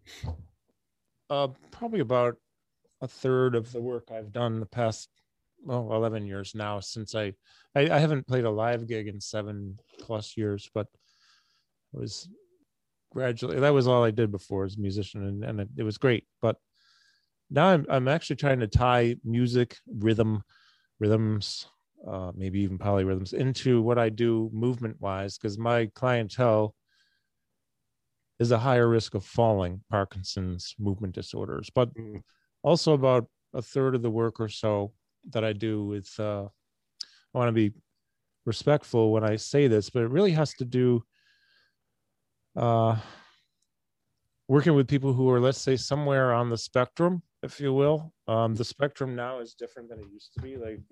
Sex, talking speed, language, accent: male, 165 wpm, English, American